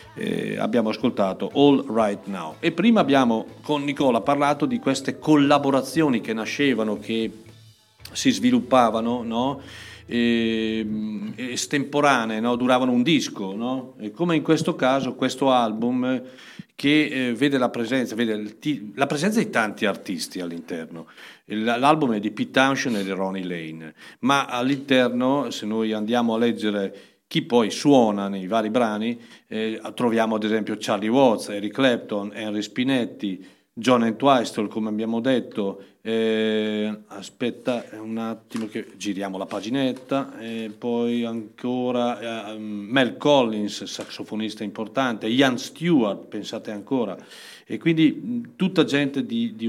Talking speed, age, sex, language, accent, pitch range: 135 wpm, 50-69, male, Italian, native, 110-135 Hz